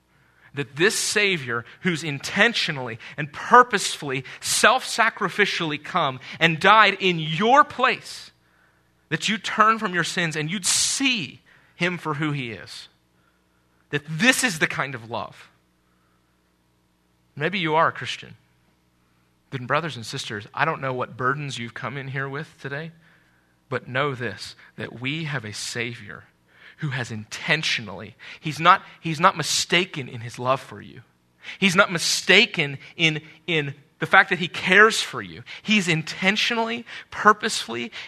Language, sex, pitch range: English, male, 110-170 Hz